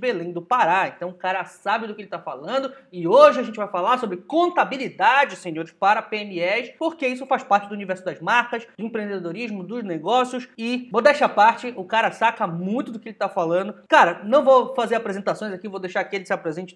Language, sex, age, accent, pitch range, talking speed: Portuguese, male, 20-39, Brazilian, 185-250 Hz, 215 wpm